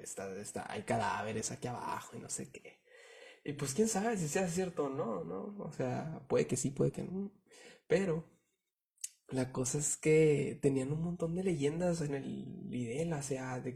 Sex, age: male, 20-39